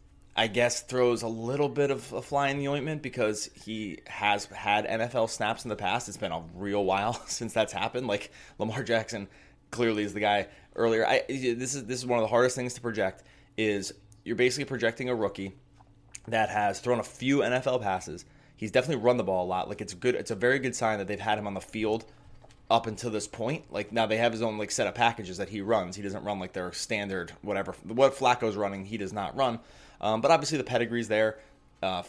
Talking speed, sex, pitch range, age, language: 230 wpm, male, 100-125 Hz, 20-39, English